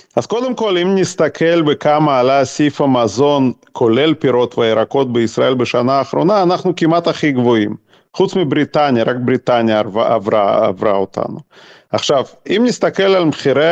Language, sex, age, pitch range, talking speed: Hebrew, male, 40-59, 120-180 Hz, 140 wpm